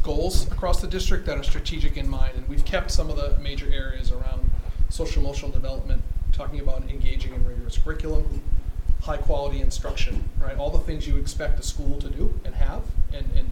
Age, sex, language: 30-49, male, English